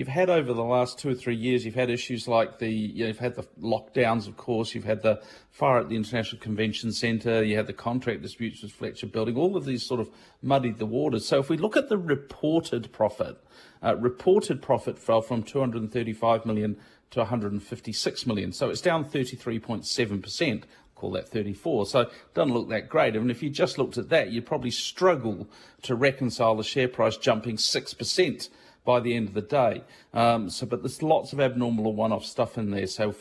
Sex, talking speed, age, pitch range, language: male, 215 wpm, 40-59, 110-130 Hz, English